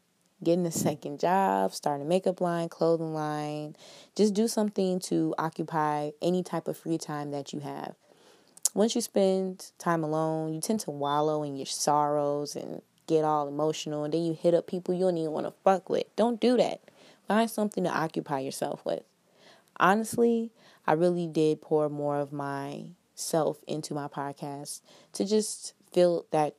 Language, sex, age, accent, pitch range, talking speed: English, female, 20-39, American, 150-185 Hz, 170 wpm